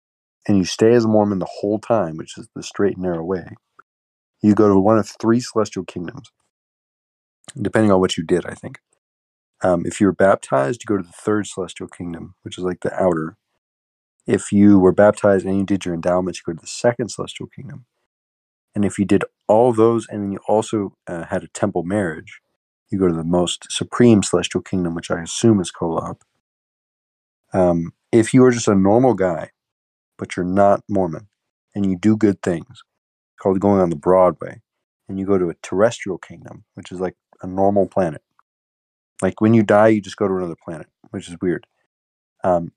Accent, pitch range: American, 85-105 Hz